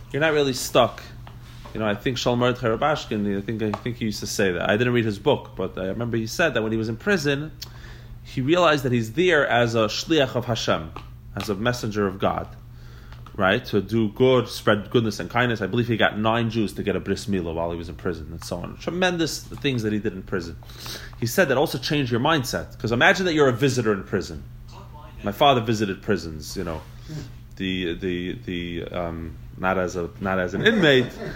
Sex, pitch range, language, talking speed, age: male, 105-140 Hz, English, 220 wpm, 30-49